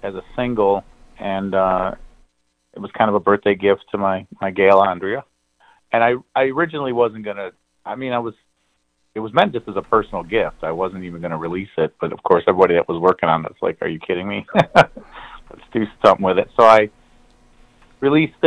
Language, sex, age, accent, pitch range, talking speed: English, male, 30-49, American, 95-110 Hz, 210 wpm